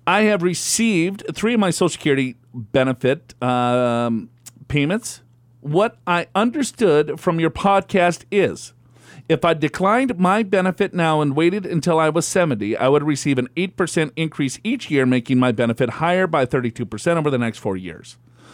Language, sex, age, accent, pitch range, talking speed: English, male, 40-59, American, 125-180 Hz, 160 wpm